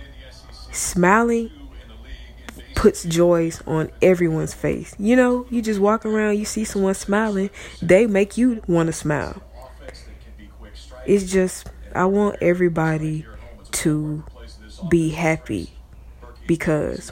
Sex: female